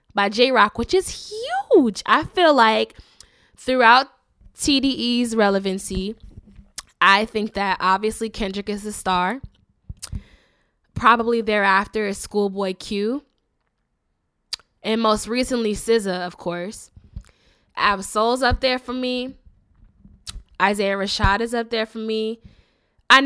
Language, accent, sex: English, American, female